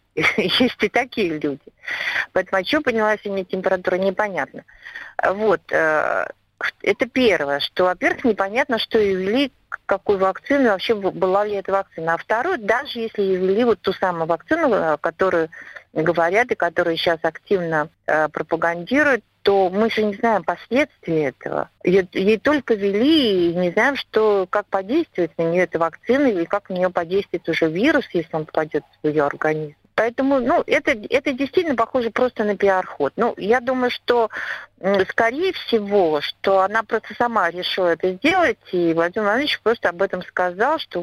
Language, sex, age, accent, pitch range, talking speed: Russian, female, 50-69, native, 175-230 Hz, 155 wpm